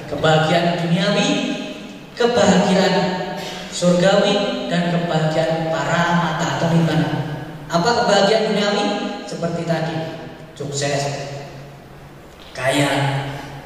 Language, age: Indonesian, 20-39